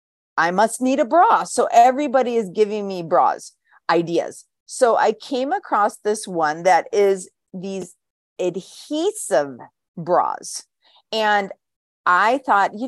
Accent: American